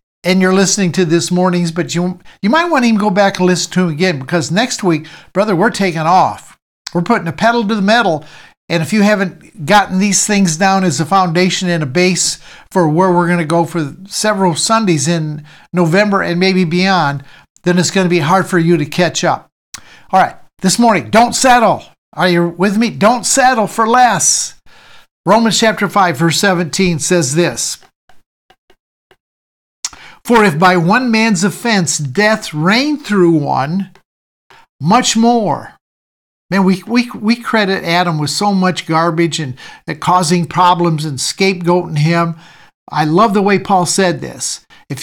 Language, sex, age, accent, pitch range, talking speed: English, male, 60-79, American, 170-205 Hz, 175 wpm